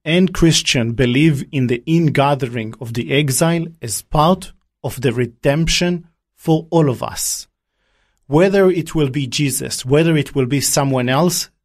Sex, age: male, 40-59